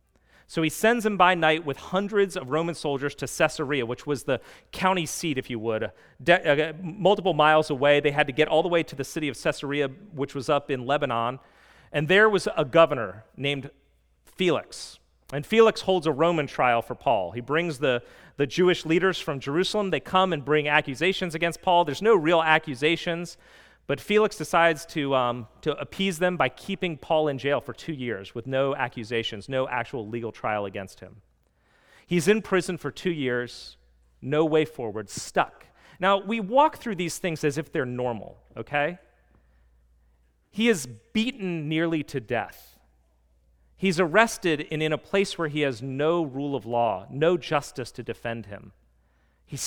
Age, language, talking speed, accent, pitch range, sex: 40-59, English, 175 wpm, American, 120-170 Hz, male